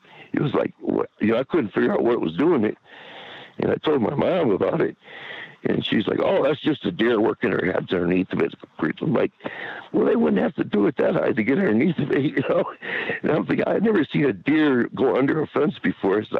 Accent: American